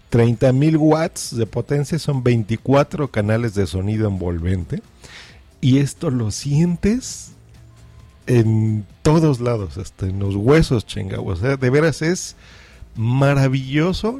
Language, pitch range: Spanish, 105-140 Hz